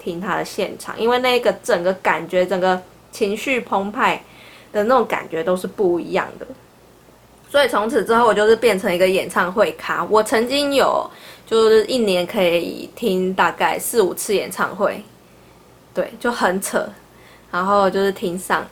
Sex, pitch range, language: female, 180-225 Hz, Chinese